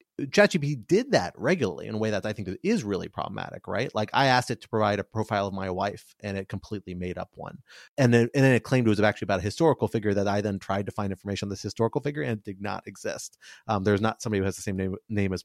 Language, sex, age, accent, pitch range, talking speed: English, male, 30-49, American, 95-120 Hz, 275 wpm